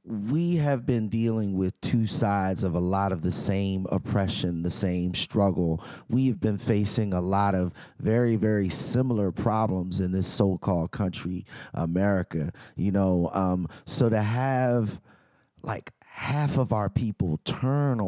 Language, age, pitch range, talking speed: English, 30-49, 110-165 Hz, 150 wpm